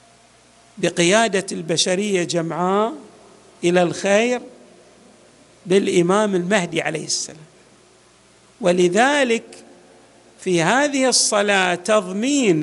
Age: 50-69